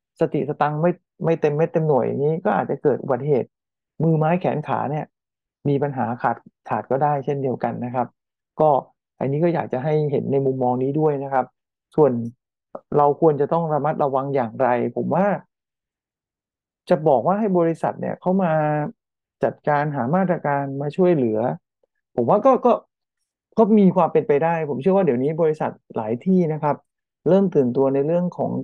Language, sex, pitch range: English, male, 135-165 Hz